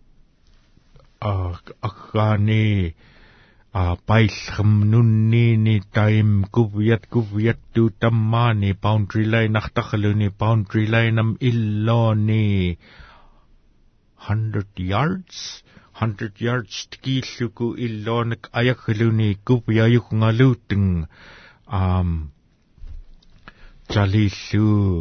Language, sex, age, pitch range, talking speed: English, male, 60-79, 95-110 Hz, 80 wpm